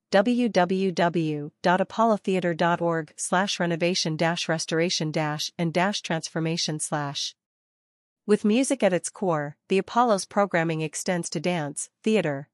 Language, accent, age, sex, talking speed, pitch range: English, American, 40-59, female, 100 wpm, 160-195 Hz